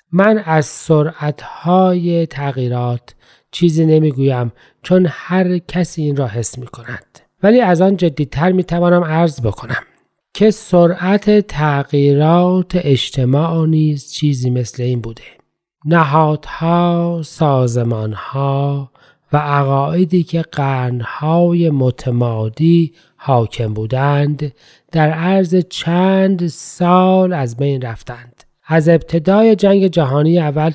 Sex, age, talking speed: male, 40-59, 100 wpm